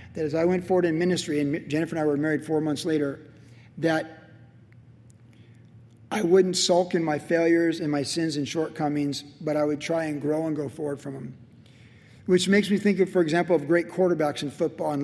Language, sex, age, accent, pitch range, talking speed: English, male, 40-59, American, 150-190 Hz, 210 wpm